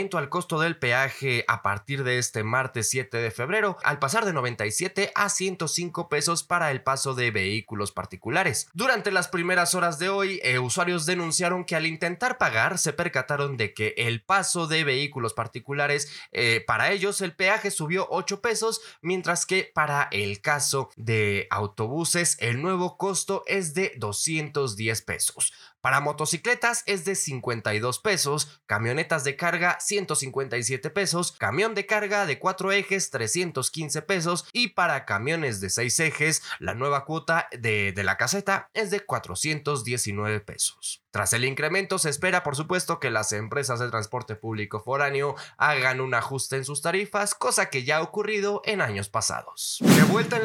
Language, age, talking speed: Spanish, 20-39, 160 wpm